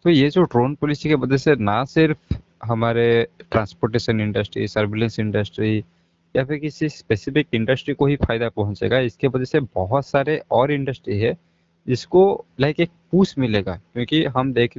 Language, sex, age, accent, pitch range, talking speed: Hindi, male, 20-39, native, 110-140 Hz, 160 wpm